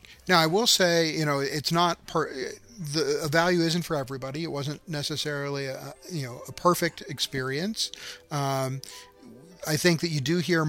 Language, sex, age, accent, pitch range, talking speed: English, male, 40-59, American, 130-155 Hz, 175 wpm